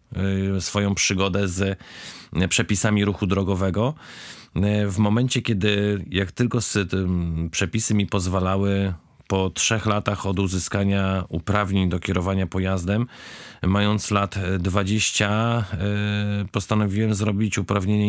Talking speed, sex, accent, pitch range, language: 105 wpm, male, native, 95-110 Hz, Polish